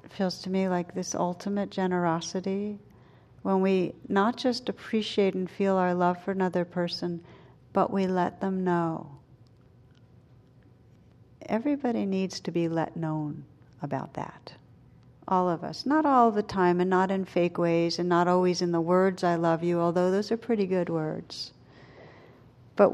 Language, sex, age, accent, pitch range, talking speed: English, female, 60-79, American, 130-195 Hz, 155 wpm